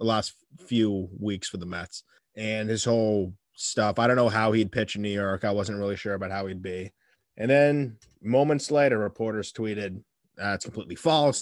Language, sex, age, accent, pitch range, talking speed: English, male, 20-39, American, 100-125 Hz, 200 wpm